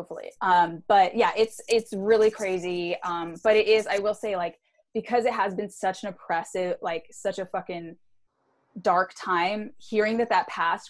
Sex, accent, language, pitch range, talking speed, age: female, American, English, 170-215 Hz, 180 wpm, 10-29